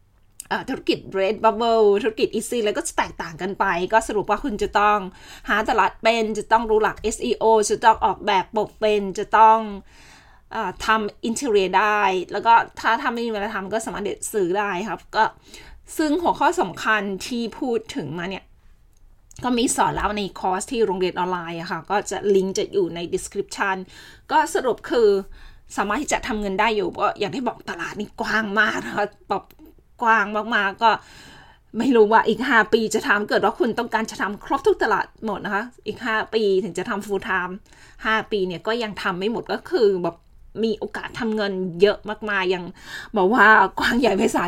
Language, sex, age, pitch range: Thai, female, 20-39, 190-225 Hz